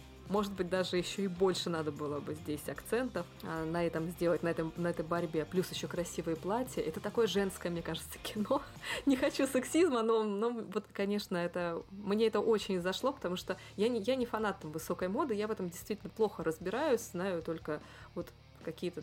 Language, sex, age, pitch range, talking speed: Russian, female, 20-39, 165-210 Hz, 190 wpm